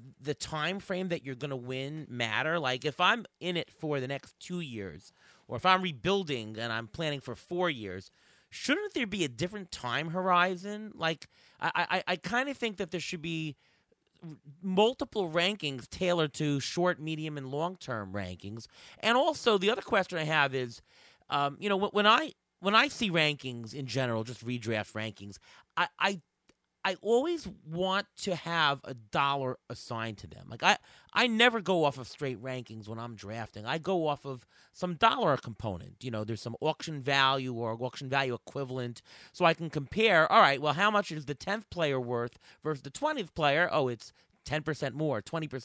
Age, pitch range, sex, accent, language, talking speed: 30-49, 130-185 Hz, male, American, English, 190 wpm